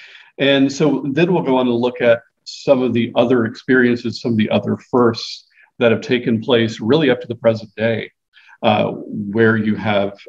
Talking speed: 190 wpm